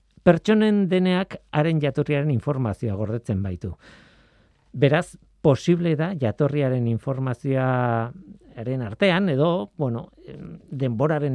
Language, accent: Spanish, Spanish